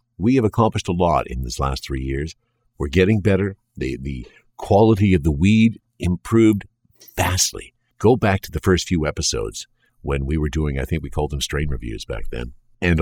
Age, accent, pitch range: 50-69, American, 75-100 Hz